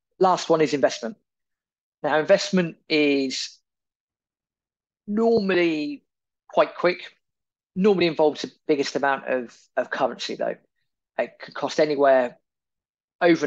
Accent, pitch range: British, 130-155 Hz